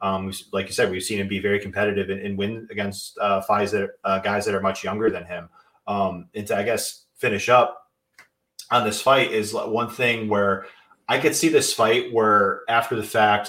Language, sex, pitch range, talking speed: English, male, 90-105 Hz, 205 wpm